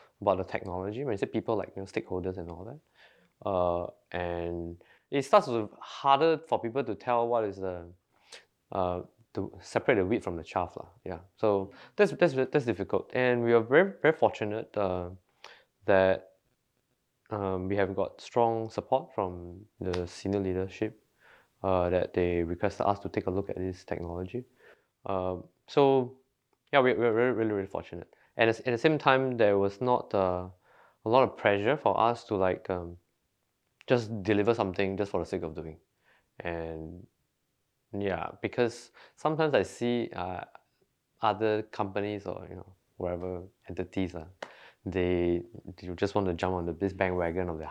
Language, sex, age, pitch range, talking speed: English, male, 20-39, 90-115 Hz, 170 wpm